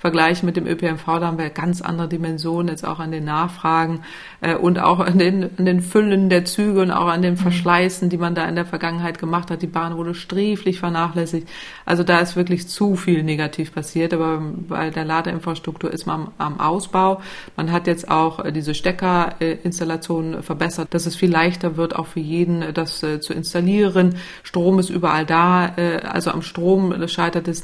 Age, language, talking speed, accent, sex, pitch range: 30-49, German, 195 wpm, German, female, 160-175 Hz